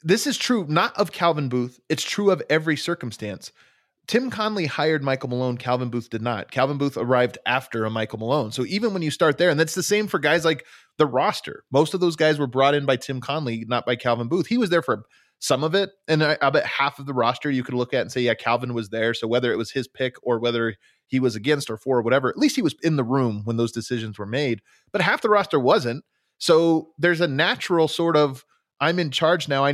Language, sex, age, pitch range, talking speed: English, male, 30-49, 120-155 Hz, 250 wpm